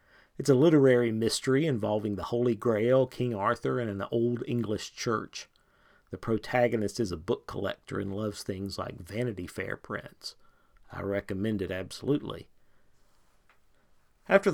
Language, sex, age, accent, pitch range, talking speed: English, male, 50-69, American, 100-125 Hz, 135 wpm